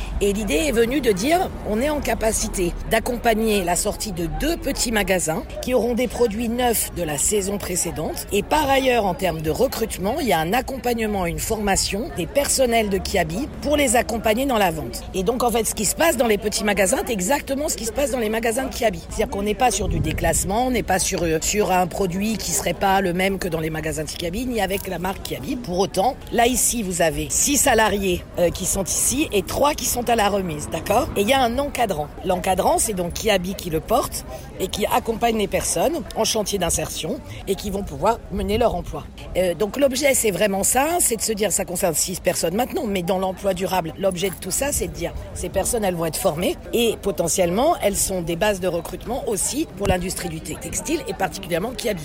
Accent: French